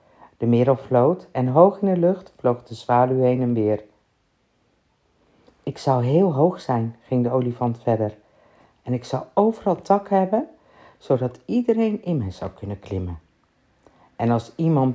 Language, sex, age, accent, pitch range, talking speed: Dutch, female, 50-69, Dutch, 115-180 Hz, 155 wpm